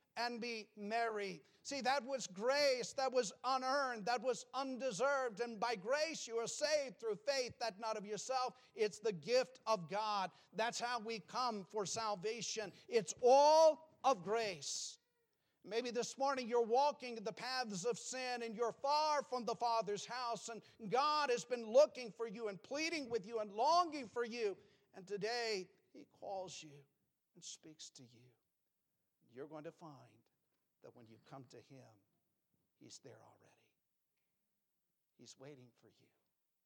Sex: male